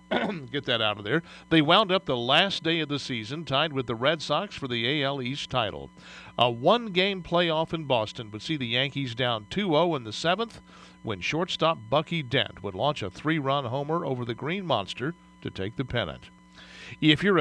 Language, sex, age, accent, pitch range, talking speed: English, male, 50-69, American, 125-170 Hz, 195 wpm